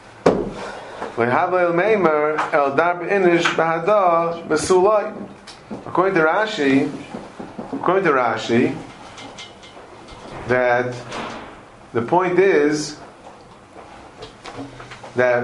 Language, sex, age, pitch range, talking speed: English, male, 40-59, 120-165 Hz, 45 wpm